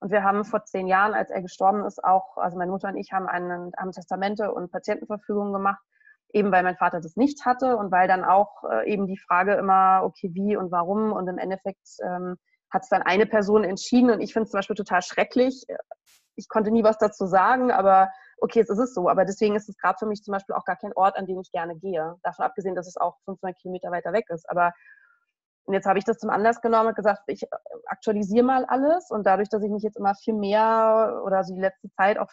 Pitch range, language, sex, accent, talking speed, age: 185-225 Hz, German, female, German, 240 wpm, 20-39